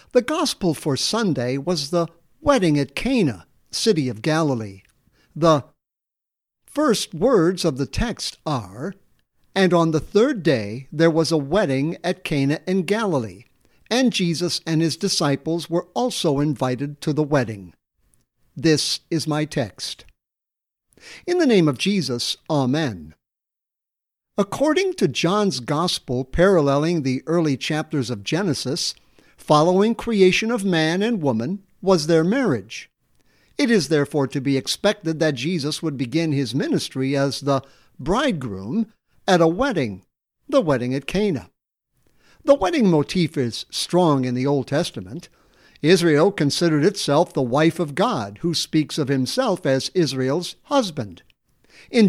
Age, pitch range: 60-79, 140-190 Hz